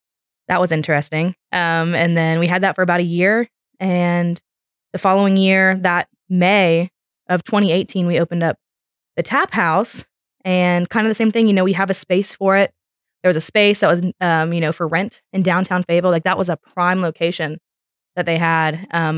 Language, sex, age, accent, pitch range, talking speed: English, female, 20-39, American, 165-190 Hz, 205 wpm